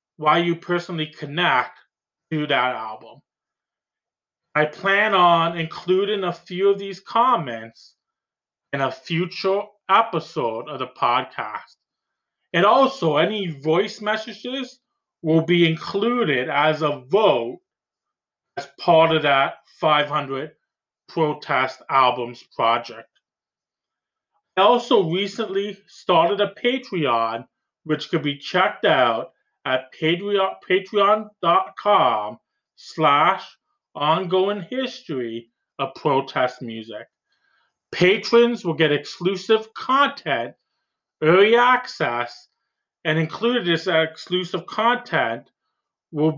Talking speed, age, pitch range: 100 wpm, 30-49, 155-200 Hz